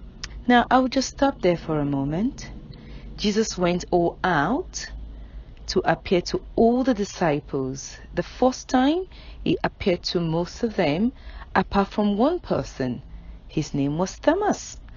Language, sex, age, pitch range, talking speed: English, female, 40-59, 155-230 Hz, 140 wpm